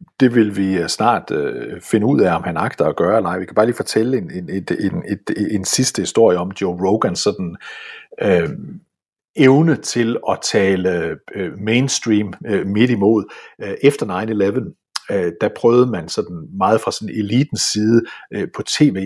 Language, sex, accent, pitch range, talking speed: Danish, male, native, 105-180 Hz, 165 wpm